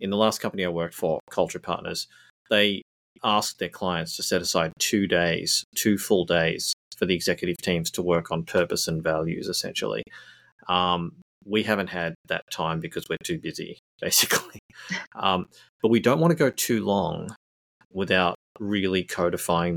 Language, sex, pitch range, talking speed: English, male, 85-100 Hz, 165 wpm